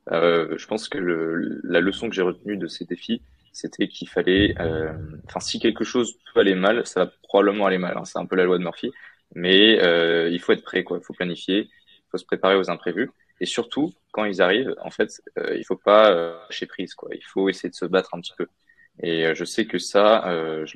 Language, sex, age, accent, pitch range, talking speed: French, male, 20-39, French, 85-95 Hz, 245 wpm